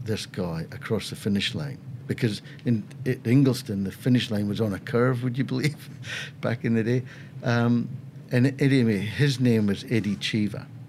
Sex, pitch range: male, 110-140 Hz